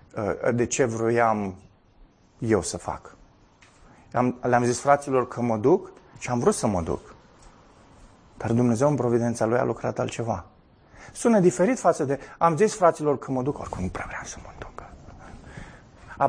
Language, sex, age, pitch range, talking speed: Romanian, male, 30-49, 110-165 Hz, 160 wpm